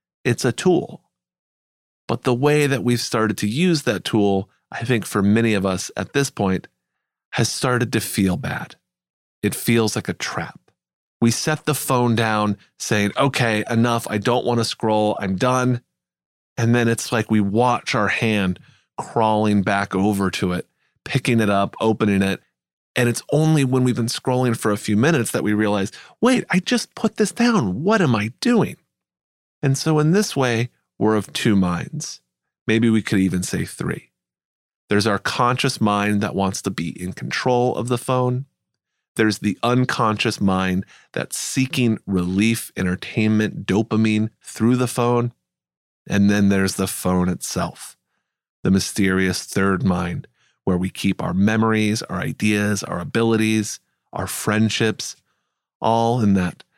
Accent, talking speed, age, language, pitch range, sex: American, 160 wpm, 30-49, English, 95-125 Hz, male